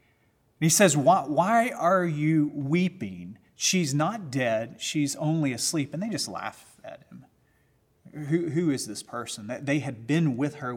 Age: 30-49